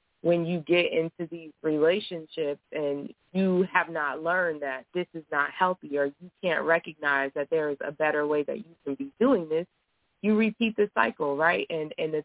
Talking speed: 195 wpm